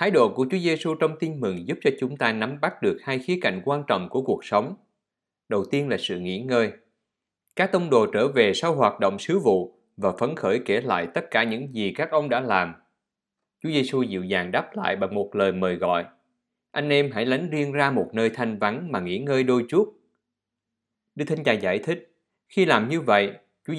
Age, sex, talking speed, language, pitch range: 20-39, male, 220 wpm, Vietnamese, 110-150 Hz